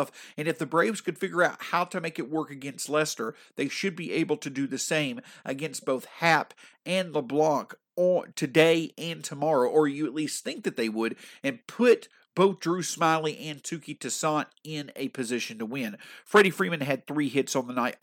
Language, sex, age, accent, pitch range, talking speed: English, male, 50-69, American, 140-190 Hz, 200 wpm